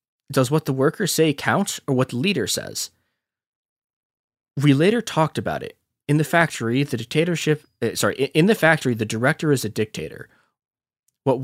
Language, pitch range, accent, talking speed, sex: English, 105-145 Hz, American, 165 wpm, male